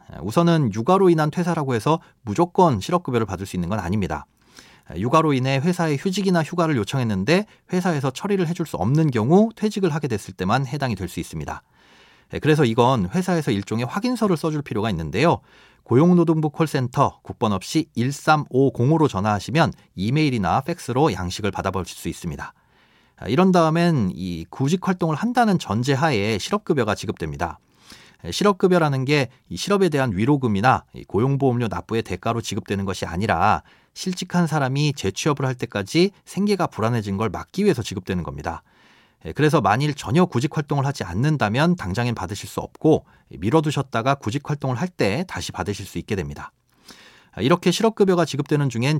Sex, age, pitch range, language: male, 40-59, 110-170 Hz, Korean